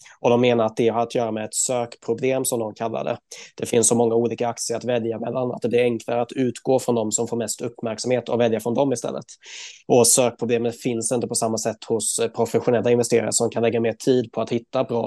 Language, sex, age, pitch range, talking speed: Swedish, male, 20-39, 115-125 Hz, 240 wpm